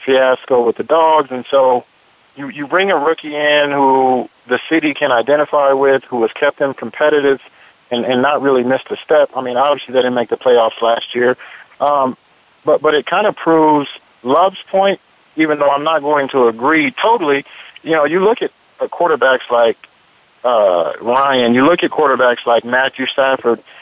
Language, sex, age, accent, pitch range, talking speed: English, male, 50-69, American, 125-150 Hz, 185 wpm